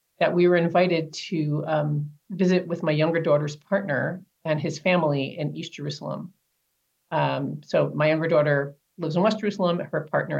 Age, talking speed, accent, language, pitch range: 40-59, 165 wpm, American, English, 155-185 Hz